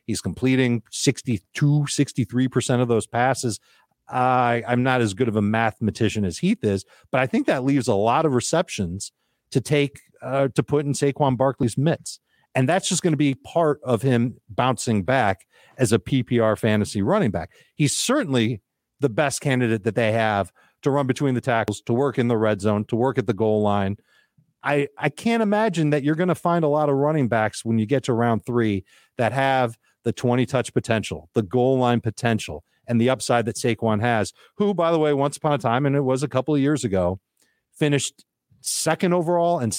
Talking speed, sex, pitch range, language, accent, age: 200 wpm, male, 110-140 Hz, English, American, 40-59